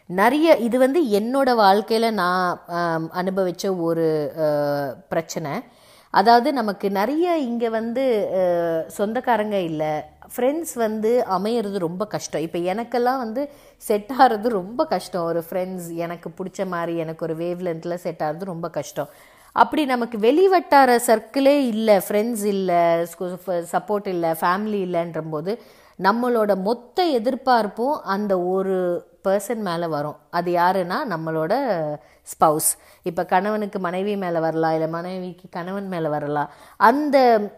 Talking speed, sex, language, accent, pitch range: 120 wpm, female, Tamil, native, 175-230 Hz